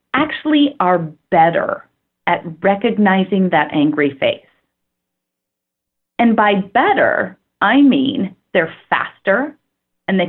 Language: English